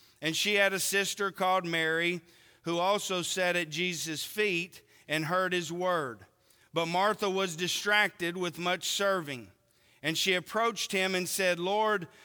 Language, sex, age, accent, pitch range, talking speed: English, male, 40-59, American, 165-205 Hz, 150 wpm